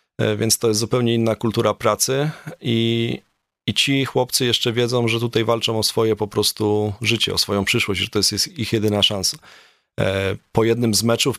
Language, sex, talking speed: Polish, male, 180 wpm